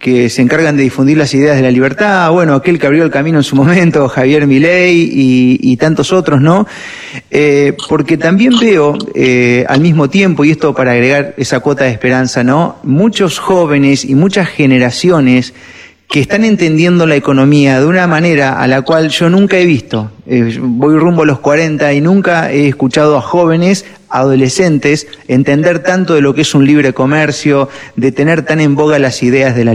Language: Spanish